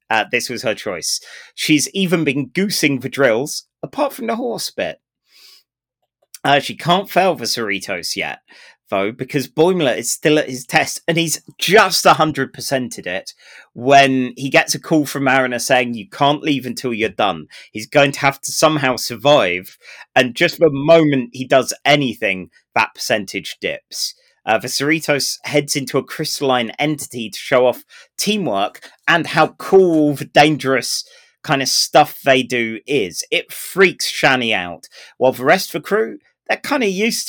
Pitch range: 125-165 Hz